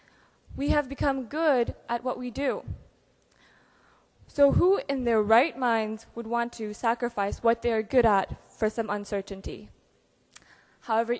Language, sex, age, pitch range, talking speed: English, female, 20-39, 215-265 Hz, 145 wpm